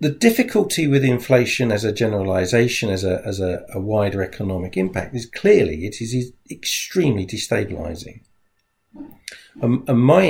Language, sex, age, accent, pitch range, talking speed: English, male, 50-69, British, 100-125 Hz, 120 wpm